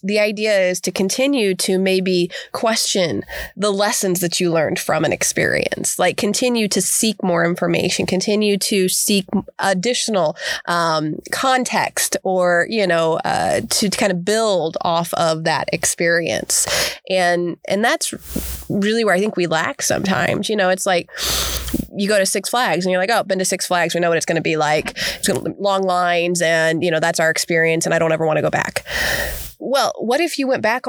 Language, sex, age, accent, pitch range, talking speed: English, female, 20-39, American, 180-230 Hz, 200 wpm